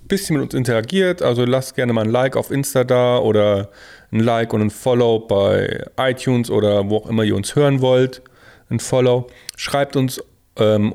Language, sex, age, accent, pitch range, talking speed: German, male, 40-59, German, 110-140 Hz, 185 wpm